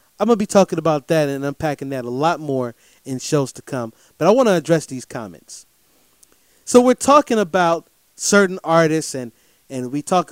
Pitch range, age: 140-190 Hz, 30-49